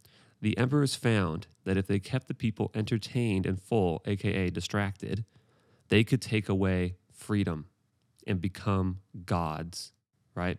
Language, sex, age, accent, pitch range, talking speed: English, male, 30-49, American, 95-115 Hz, 130 wpm